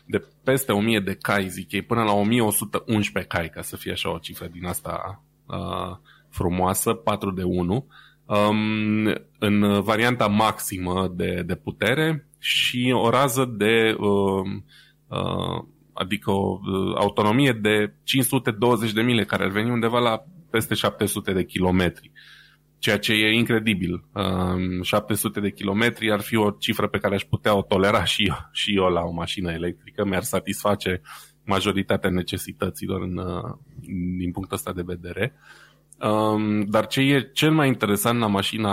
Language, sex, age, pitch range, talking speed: Romanian, male, 20-39, 95-115 Hz, 140 wpm